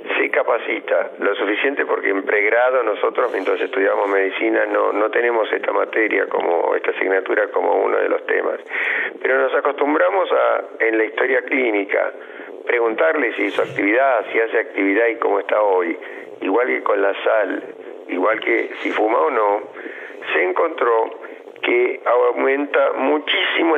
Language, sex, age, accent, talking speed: Spanish, male, 50-69, Argentinian, 150 wpm